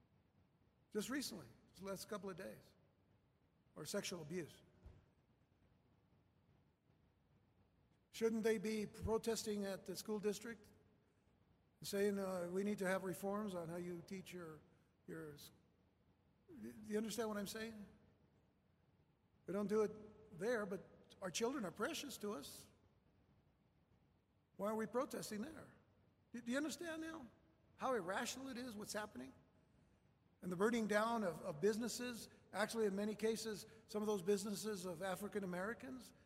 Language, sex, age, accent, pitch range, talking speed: English, male, 60-79, American, 185-230 Hz, 135 wpm